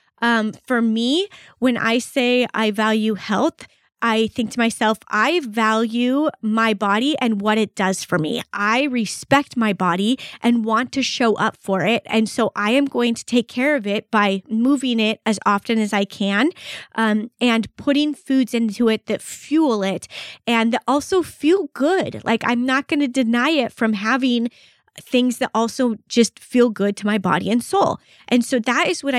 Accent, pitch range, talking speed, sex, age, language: American, 215-250 Hz, 185 wpm, female, 20-39, English